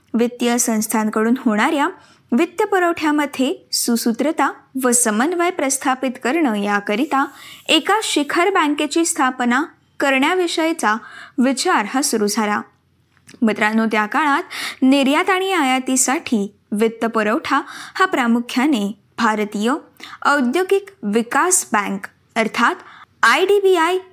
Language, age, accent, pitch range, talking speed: Marathi, 20-39, native, 230-330 Hz, 90 wpm